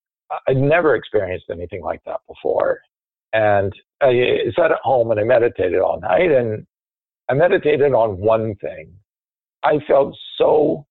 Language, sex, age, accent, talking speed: English, male, 50-69, American, 145 wpm